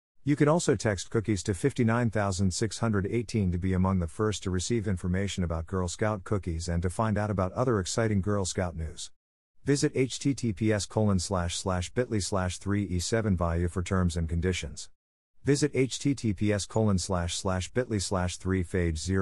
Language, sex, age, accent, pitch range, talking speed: English, male, 50-69, American, 90-115 Hz, 155 wpm